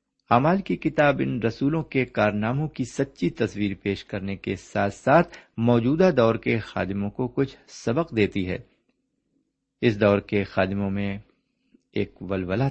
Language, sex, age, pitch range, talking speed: Urdu, male, 50-69, 100-135 Hz, 145 wpm